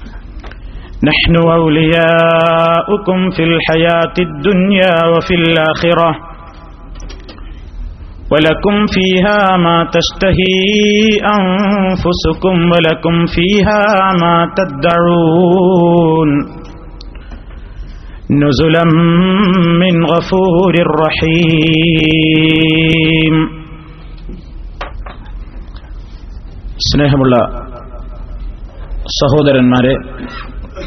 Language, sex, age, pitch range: Malayalam, male, 30-49, 105-170 Hz